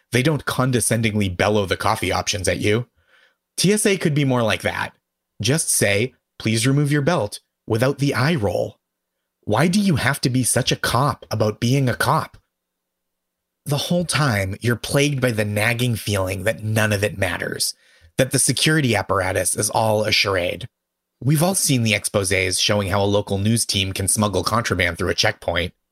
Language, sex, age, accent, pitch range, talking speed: English, male, 30-49, American, 100-130 Hz, 180 wpm